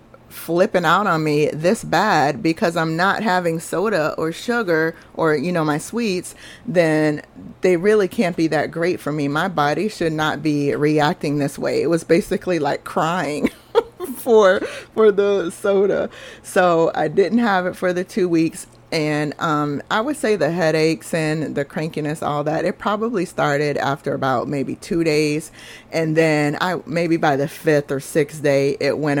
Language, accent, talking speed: English, American, 175 wpm